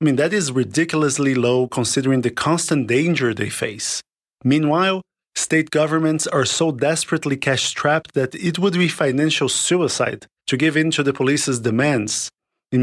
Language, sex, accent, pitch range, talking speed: English, male, Brazilian, 125-160 Hz, 155 wpm